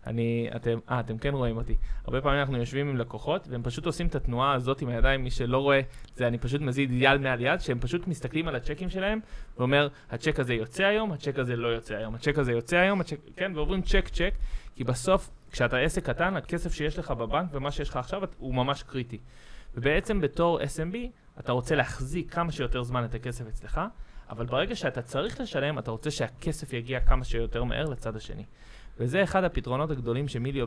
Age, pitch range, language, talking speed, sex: 20-39, 120-150 Hz, Hebrew, 155 wpm, male